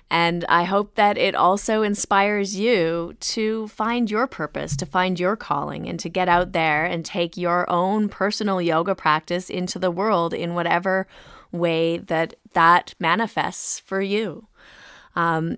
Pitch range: 170-200 Hz